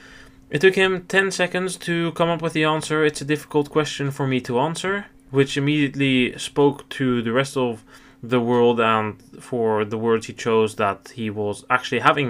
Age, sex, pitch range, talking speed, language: 20-39, male, 110-140 Hz, 190 wpm, English